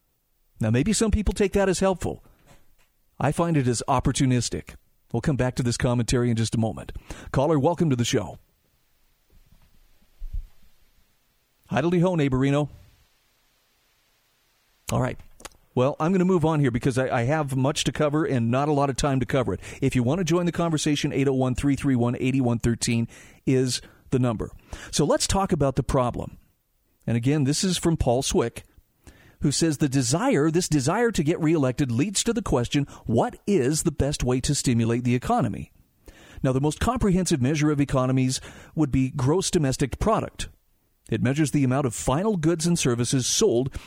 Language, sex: English, male